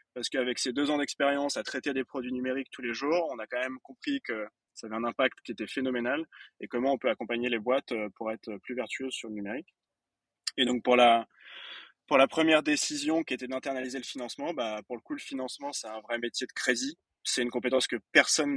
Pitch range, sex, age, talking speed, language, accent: 115-135 Hz, male, 20-39, 230 wpm, French, French